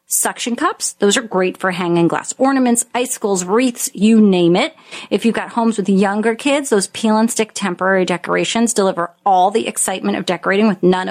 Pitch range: 185-240 Hz